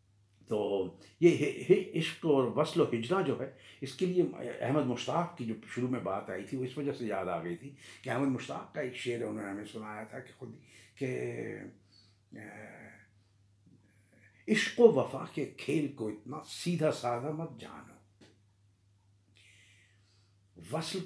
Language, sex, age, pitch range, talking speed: Urdu, male, 70-89, 100-145 Hz, 155 wpm